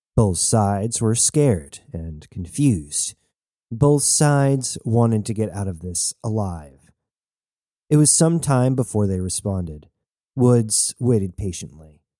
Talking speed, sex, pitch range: 125 wpm, male, 95-130 Hz